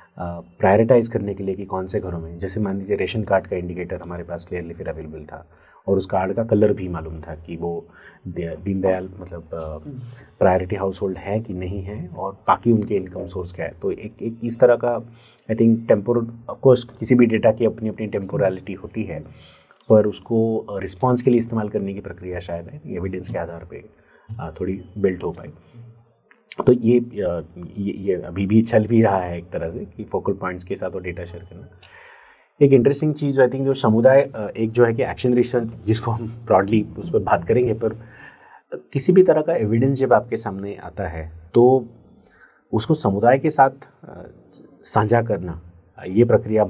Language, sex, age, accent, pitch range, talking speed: Hindi, male, 30-49, native, 90-120 Hz, 195 wpm